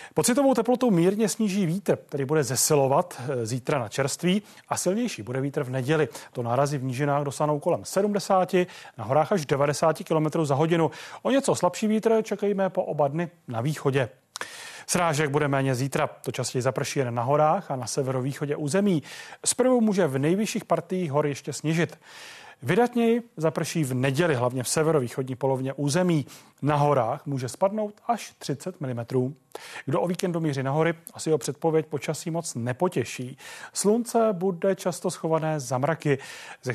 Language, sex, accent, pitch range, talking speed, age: Czech, male, native, 140-185 Hz, 155 wpm, 30-49